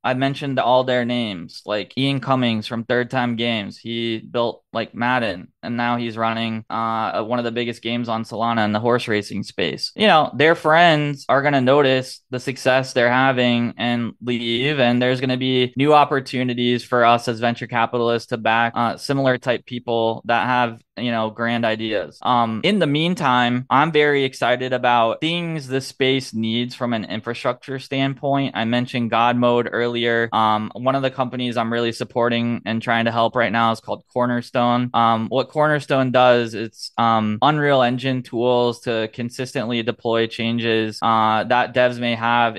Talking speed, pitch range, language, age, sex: 180 wpm, 115-130 Hz, English, 20-39, male